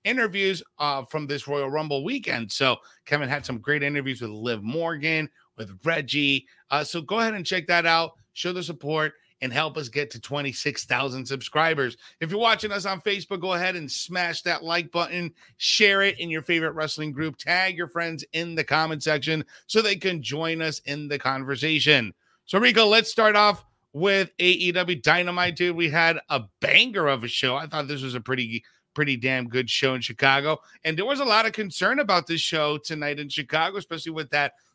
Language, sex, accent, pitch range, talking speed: English, male, American, 135-175 Hz, 200 wpm